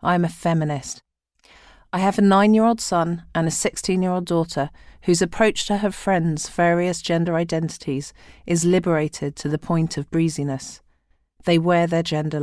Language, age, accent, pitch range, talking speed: English, 40-59, British, 150-190 Hz, 155 wpm